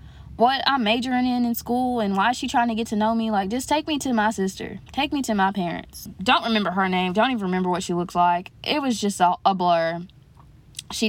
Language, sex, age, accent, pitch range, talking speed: English, female, 20-39, American, 180-220 Hz, 250 wpm